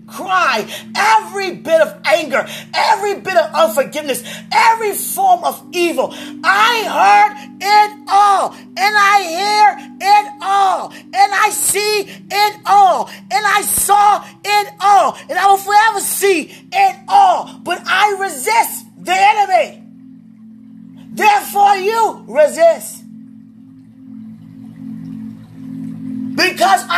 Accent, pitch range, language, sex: American, 235-395 Hz, English, male